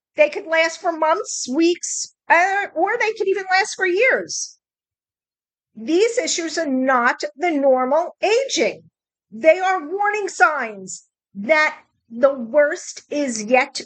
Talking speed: 125 wpm